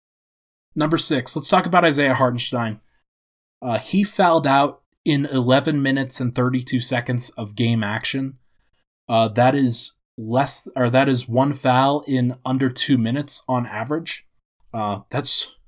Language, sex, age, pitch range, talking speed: English, male, 20-39, 110-145 Hz, 140 wpm